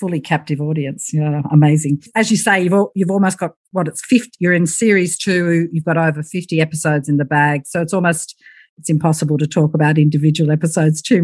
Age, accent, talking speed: 50-69, Australian, 205 wpm